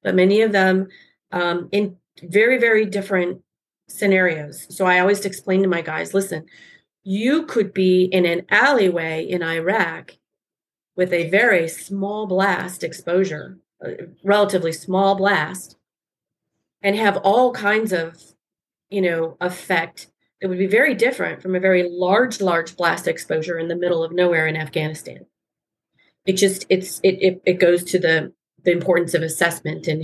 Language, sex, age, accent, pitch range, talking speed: English, female, 30-49, American, 165-190 Hz, 155 wpm